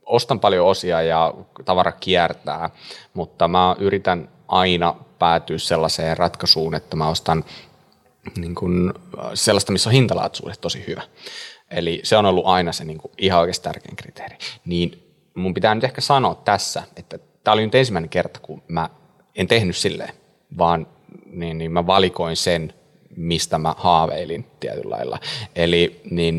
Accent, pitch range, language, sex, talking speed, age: native, 85-100 Hz, Finnish, male, 150 wpm, 30-49